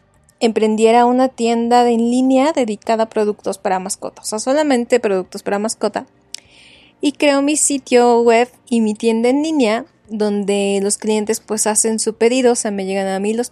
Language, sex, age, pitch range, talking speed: Spanish, female, 20-39, 210-245 Hz, 180 wpm